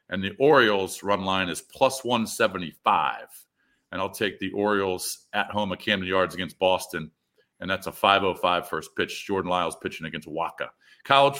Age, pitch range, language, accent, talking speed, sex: 40-59, 95-125 Hz, English, American, 170 wpm, male